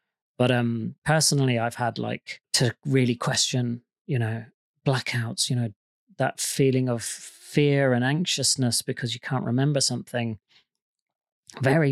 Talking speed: 130 wpm